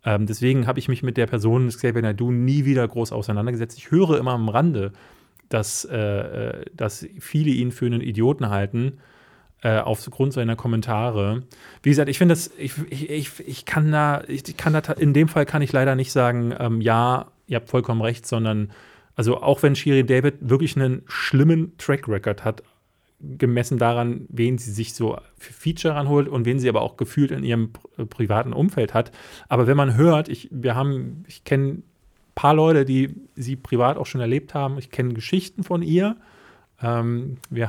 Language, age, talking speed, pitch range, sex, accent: German, 30-49, 190 wpm, 115-140 Hz, male, German